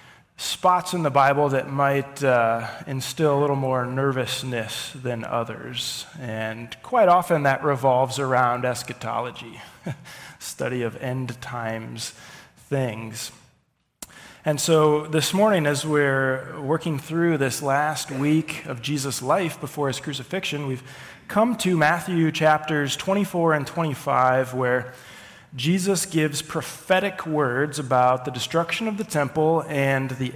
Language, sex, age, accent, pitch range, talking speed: English, male, 20-39, American, 125-150 Hz, 125 wpm